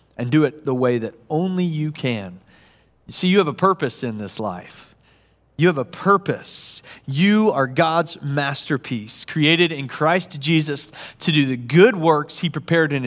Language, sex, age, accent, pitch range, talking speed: English, male, 40-59, American, 145-195 Hz, 170 wpm